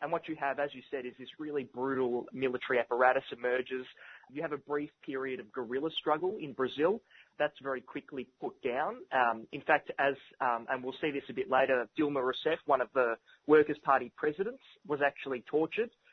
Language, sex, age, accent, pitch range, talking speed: English, male, 20-39, Australian, 125-150 Hz, 195 wpm